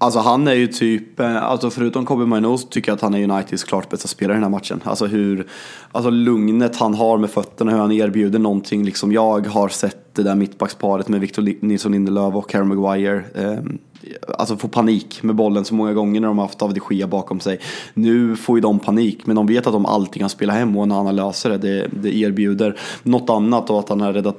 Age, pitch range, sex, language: 20-39, 100-115 Hz, male, Swedish